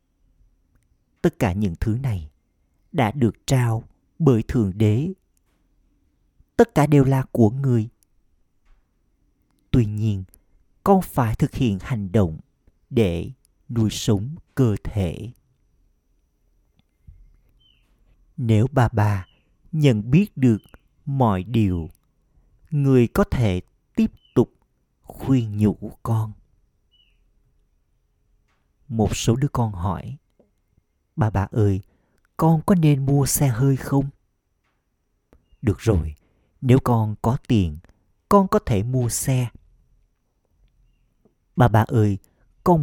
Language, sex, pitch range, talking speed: Vietnamese, male, 95-130 Hz, 105 wpm